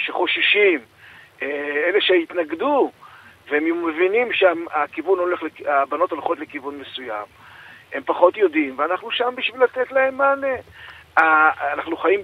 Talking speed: 100 wpm